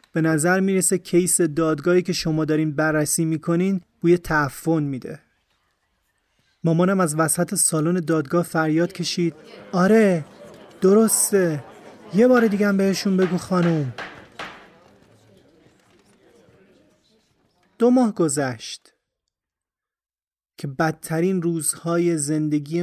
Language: Persian